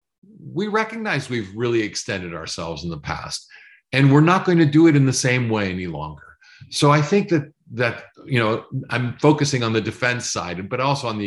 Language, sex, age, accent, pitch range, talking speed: English, male, 50-69, American, 110-145 Hz, 210 wpm